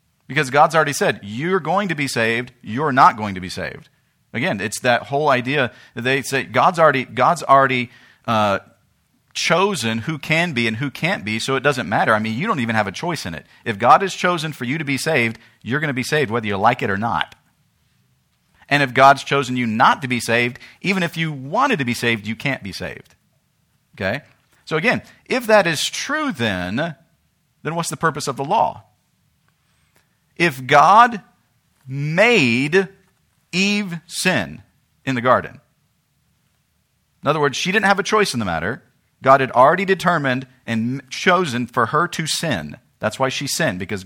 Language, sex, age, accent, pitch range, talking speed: English, male, 40-59, American, 120-160 Hz, 190 wpm